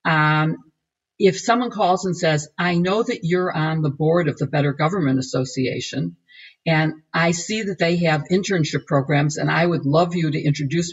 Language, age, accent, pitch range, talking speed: English, 50-69, American, 150-195 Hz, 180 wpm